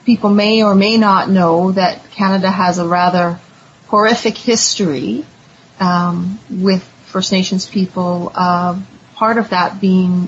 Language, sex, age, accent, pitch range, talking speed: English, female, 30-49, American, 175-195 Hz, 135 wpm